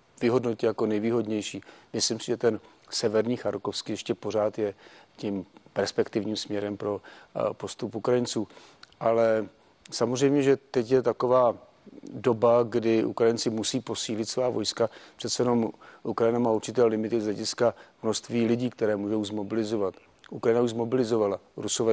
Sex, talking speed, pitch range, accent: male, 130 wpm, 105-120 Hz, native